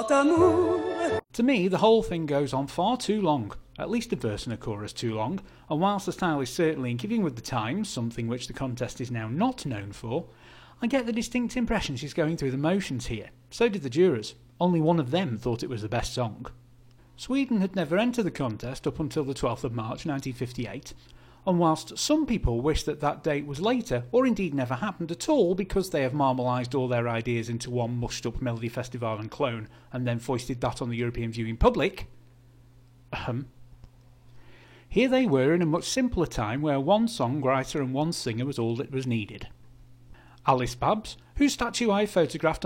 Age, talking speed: 40-59, 200 wpm